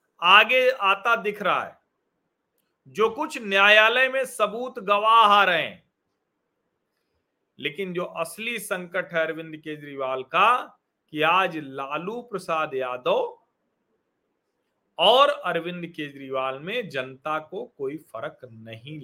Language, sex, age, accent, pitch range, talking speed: Hindi, male, 40-59, native, 155-220 Hz, 115 wpm